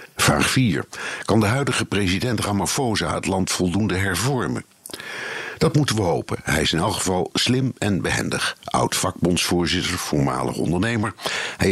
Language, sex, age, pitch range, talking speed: Dutch, male, 60-79, 80-110 Hz, 145 wpm